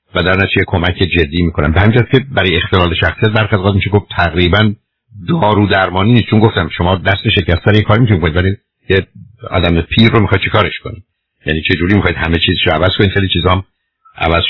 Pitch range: 85-105 Hz